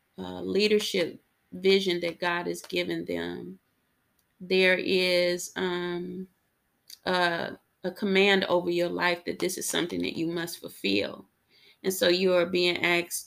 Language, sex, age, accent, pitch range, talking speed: English, female, 30-49, American, 165-185 Hz, 140 wpm